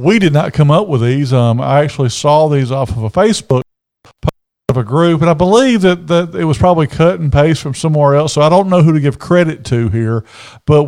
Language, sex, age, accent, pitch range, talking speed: English, male, 50-69, American, 120-165 Hz, 250 wpm